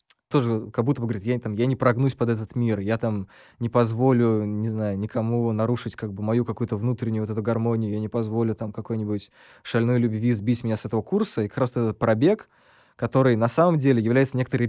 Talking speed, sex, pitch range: 215 wpm, male, 110-125 Hz